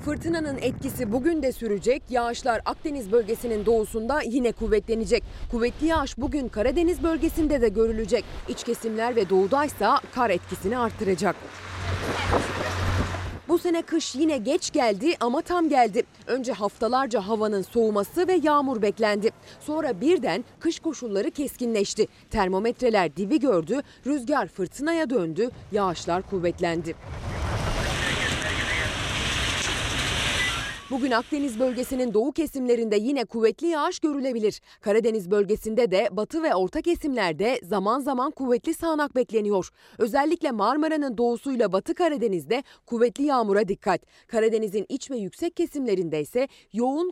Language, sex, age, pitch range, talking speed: Turkish, female, 30-49, 205-285 Hz, 115 wpm